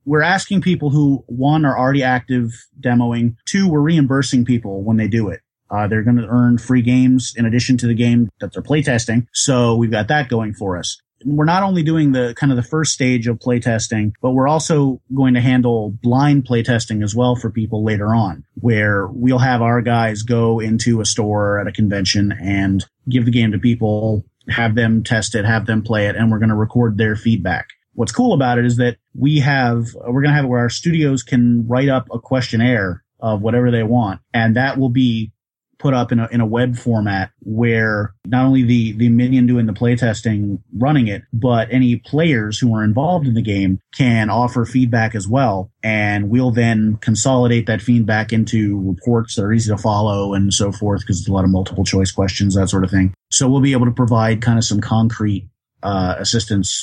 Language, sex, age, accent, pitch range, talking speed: English, male, 30-49, American, 105-125 Hz, 210 wpm